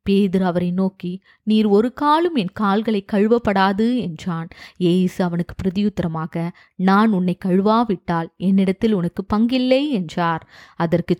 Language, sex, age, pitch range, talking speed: English, female, 20-39, 175-225 Hz, 105 wpm